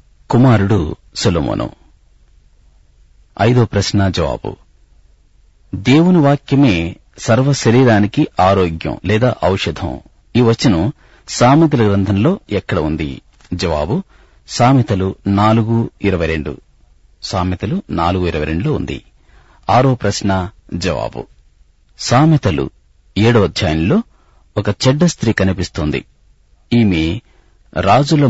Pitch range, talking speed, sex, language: 75-115 Hz, 45 wpm, male, Telugu